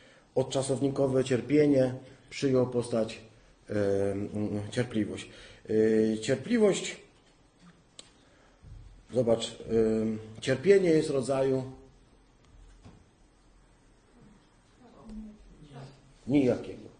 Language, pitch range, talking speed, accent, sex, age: Polish, 110-135 Hz, 40 wpm, native, male, 40-59